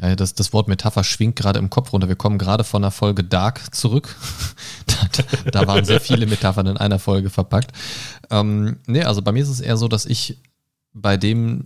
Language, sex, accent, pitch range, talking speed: German, male, German, 100-130 Hz, 215 wpm